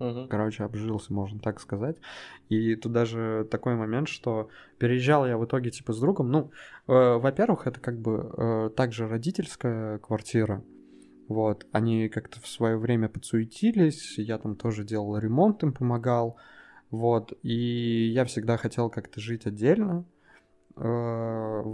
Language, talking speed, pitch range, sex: Russian, 140 wpm, 110-135 Hz, male